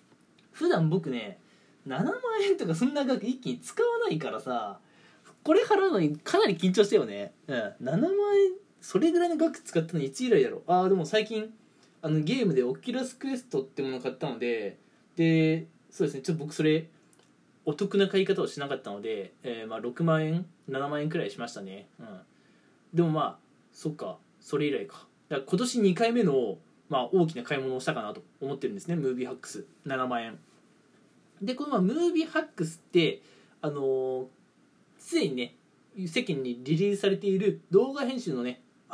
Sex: male